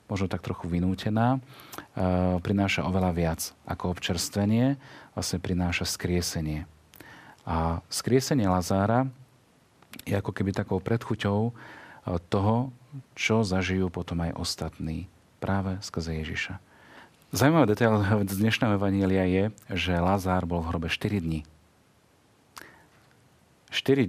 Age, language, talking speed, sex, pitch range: 40-59, Slovak, 110 wpm, male, 90-110 Hz